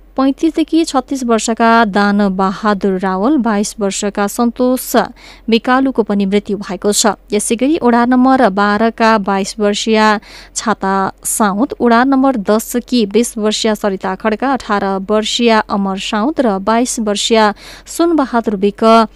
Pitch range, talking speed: 205-255 Hz, 115 wpm